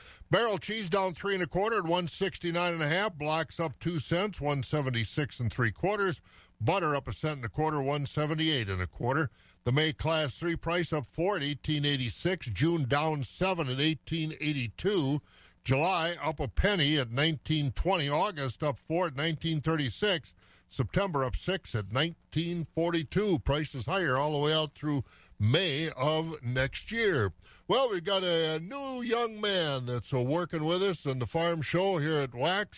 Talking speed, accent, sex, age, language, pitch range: 175 wpm, American, male, 50-69, English, 130-170 Hz